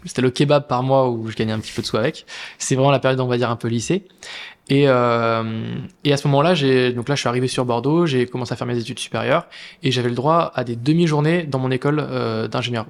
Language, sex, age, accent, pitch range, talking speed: French, male, 20-39, French, 125-150 Hz, 265 wpm